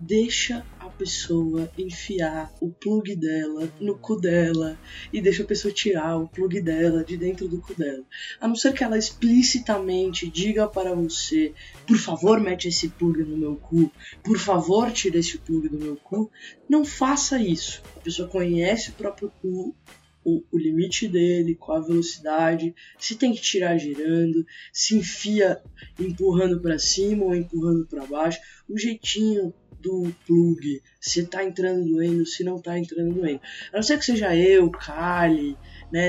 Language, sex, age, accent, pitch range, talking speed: Portuguese, female, 20-39, Brazilian, 165-205 Hz, 165 wpm